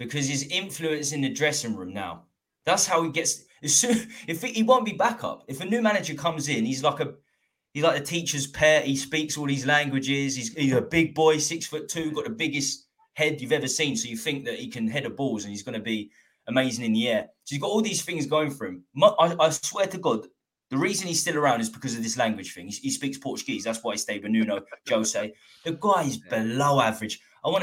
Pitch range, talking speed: 110-155 Hz, 245 wpm